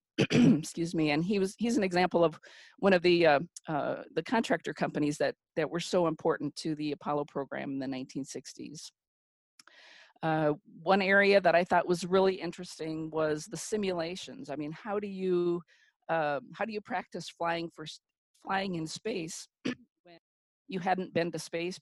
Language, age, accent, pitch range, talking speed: English, 50-69, American, 155-185 Hz, 170 wpm